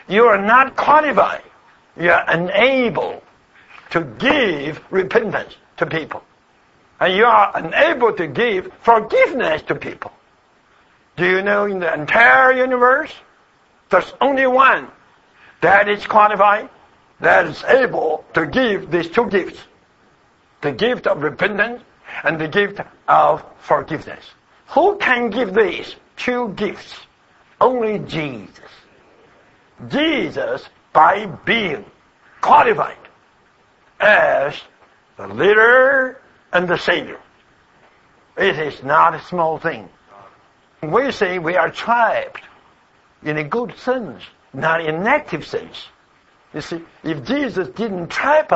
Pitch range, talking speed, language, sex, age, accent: 190-265 Hz, 115 wpm, English, male, 60-79, American